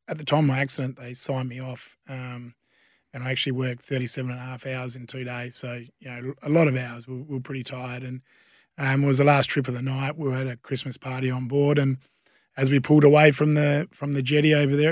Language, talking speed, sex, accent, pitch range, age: English, 260 wpm, male, Australian, 130-145 Hz, 20-39